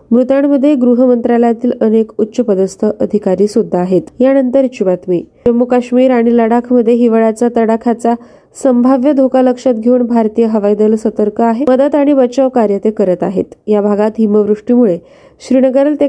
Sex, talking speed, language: female, 145 wpm, Marathi